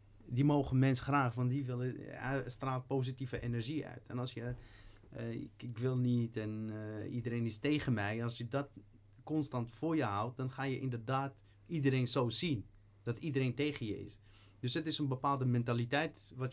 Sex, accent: male, Dutch